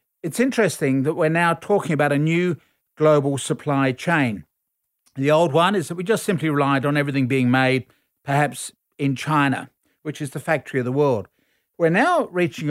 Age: 50-69